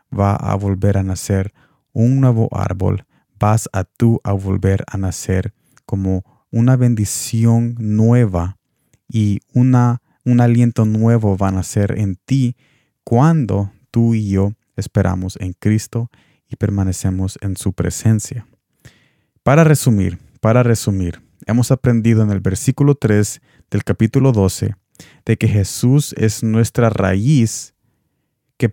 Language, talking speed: Spanish, 125 wpm